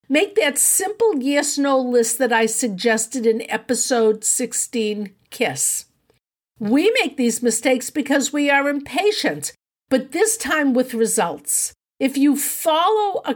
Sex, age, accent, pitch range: female, 50-69, American, 225-285 Hz